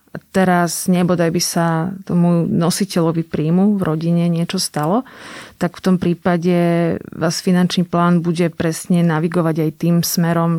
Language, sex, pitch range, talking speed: Slovak, female, 160-180 Hz, 135 wpm